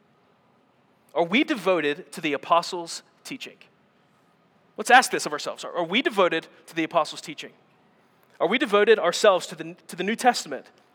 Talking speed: 155 wpm